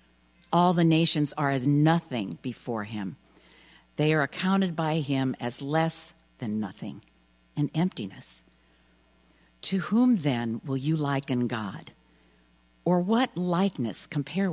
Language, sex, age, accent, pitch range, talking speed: English, female, 50-69, American, 135-195 Hz, 125 wpm